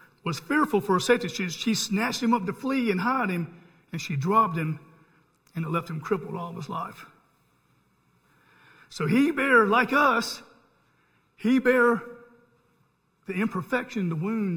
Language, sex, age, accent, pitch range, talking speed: English, male, 50-69, American, 165-220 Hz, 160 wpm